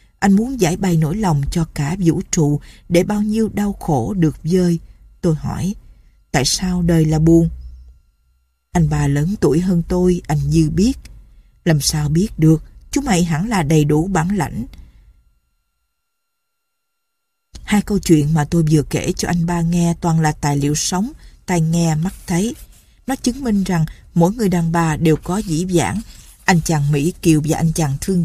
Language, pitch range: Vietnamese, 155-195 Hz